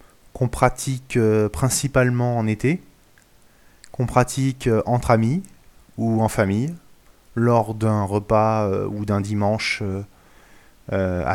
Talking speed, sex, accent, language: 125 wpm, male, French, French